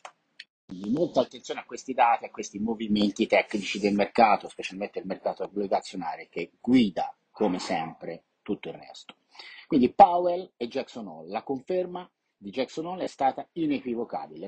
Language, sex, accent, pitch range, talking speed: Italian, male, native, 110-180 Hz, 150 wpm